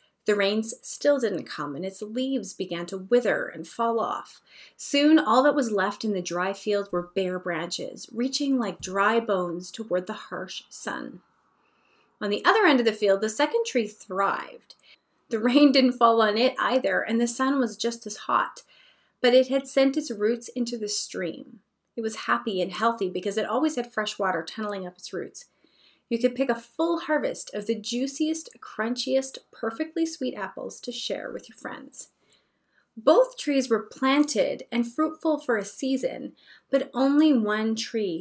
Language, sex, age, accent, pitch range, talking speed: English, female, 30-49, American, 205-280 Hz, 180 wpm